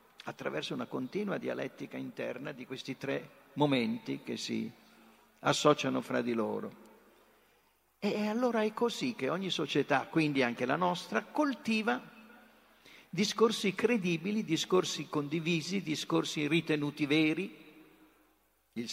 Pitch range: 135-195 Hz